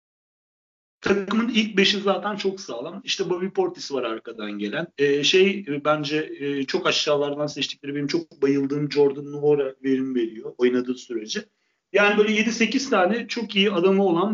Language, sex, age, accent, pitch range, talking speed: Turkish, male, 40-59, native, 140-195 Hz, 150 wpm